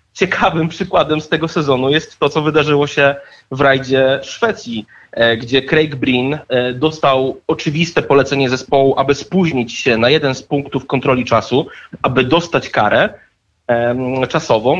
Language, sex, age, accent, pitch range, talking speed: Polish, male, 30-49, native, 130-165 Hz, 135 wpm